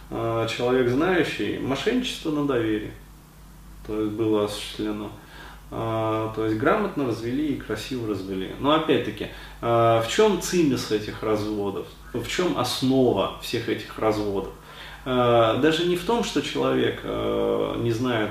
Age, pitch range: 20-39, 105-145 Hz